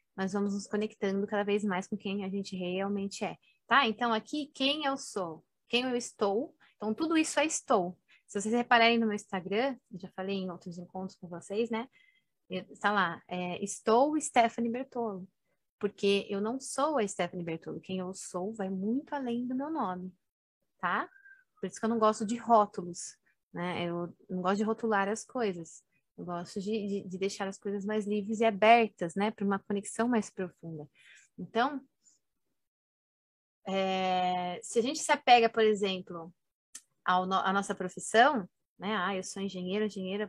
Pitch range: 190-230 Hz